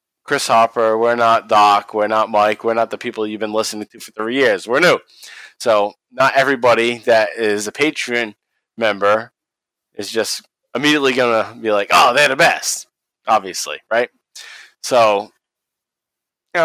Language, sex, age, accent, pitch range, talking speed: English, male, 20-39, American, 110-135 Hz, 155 wpm